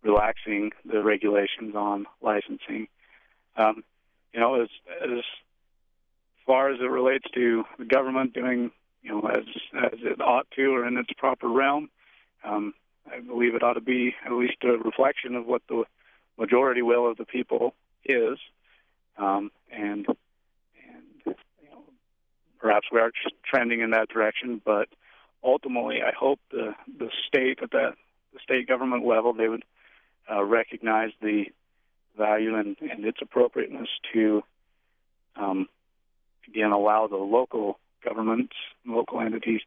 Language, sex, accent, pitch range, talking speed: English, male, American, 105-120 Hz, 145 wpm